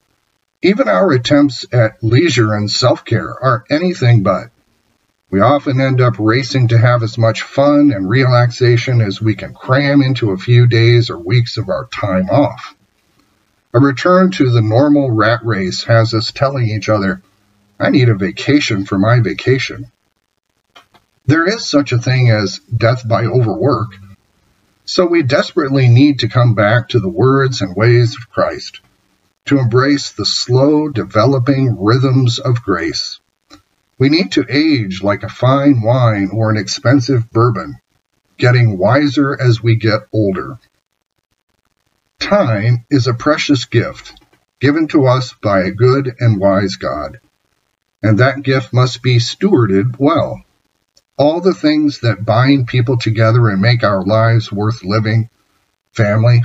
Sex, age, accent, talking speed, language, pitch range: male, 50-69, American, 145 wpm, English, 110-135 Hz